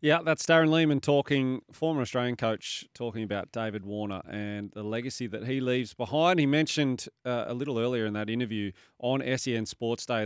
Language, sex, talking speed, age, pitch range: English, male, 185 wpm, 30-49, 115-140 Hz